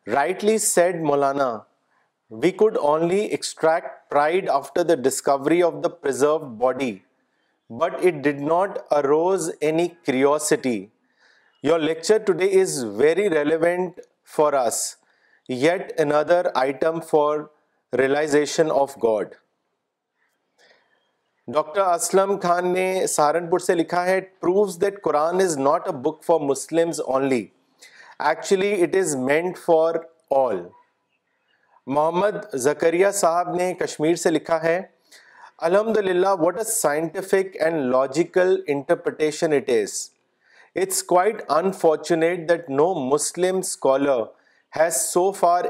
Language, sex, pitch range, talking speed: Urdu, male, 150-185 Hz, 115 wpm